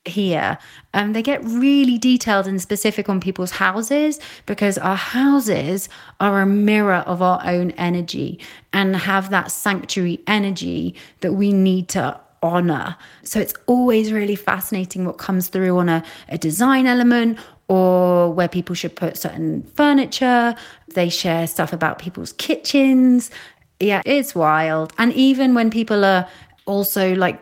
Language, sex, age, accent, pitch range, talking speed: English, female, 30-49, British, 175-200 Hz, 145 wpm